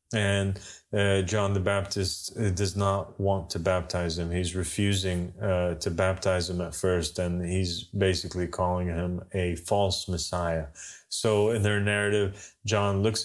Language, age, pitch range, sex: English, 30-49, 95-105 Hz, male